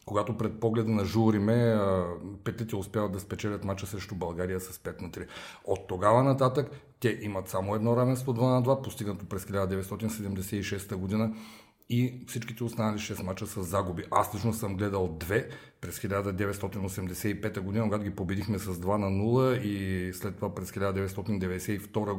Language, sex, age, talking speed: Bulgarian, male, 40-59, 155 wpm